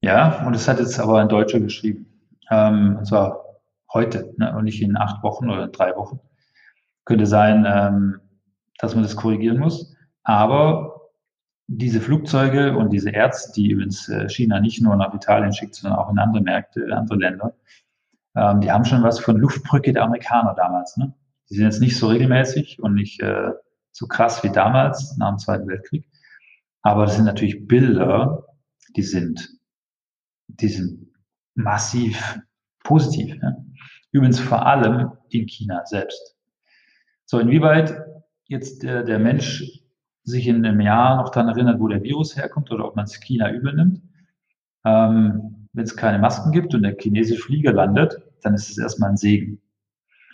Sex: male